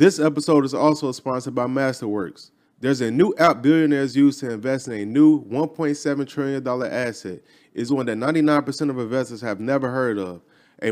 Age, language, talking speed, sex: 20-39, English, 180 wpm, male